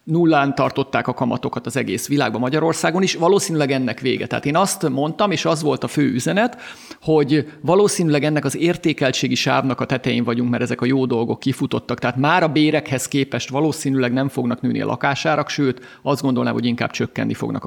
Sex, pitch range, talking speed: male, 130-165 Hz, 185 wpm